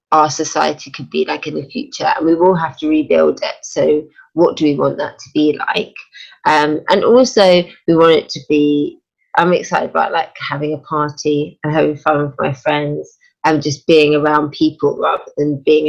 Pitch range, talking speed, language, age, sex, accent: 150-175 Hz, 200 wpm, English, 20-39, female, British